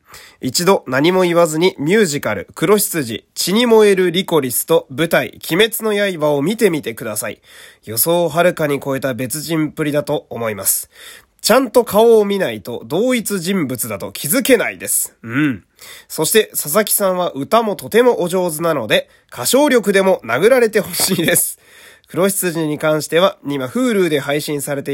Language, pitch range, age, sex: Japanese, 130-190 Hz, 20-39, male